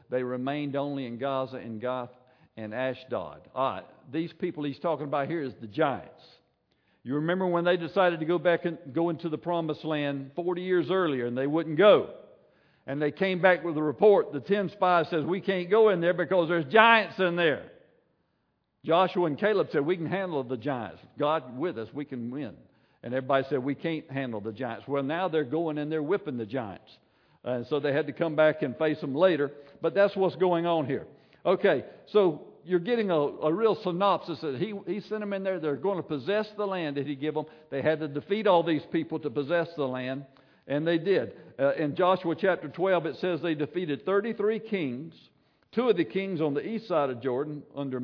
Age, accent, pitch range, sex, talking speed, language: 60-79, American, 140-180 Hz, male, 215 wpm, English